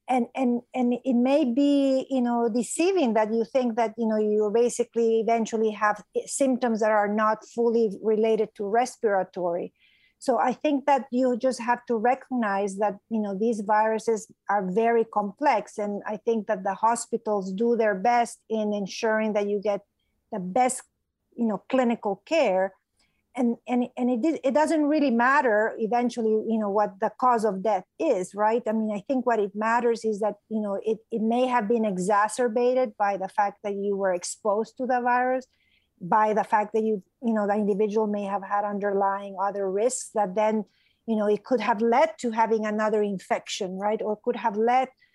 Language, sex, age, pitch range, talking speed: English, female, 50-69, 210-240 Hz, 190 wpm